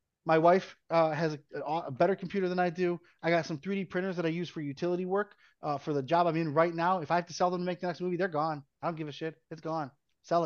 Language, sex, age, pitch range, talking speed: English, male, 30-49, 160-210 Hz, 295 wpm